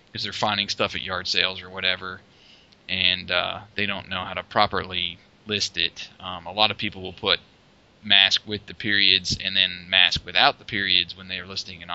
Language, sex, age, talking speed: English, male, 30-49, 195 wpm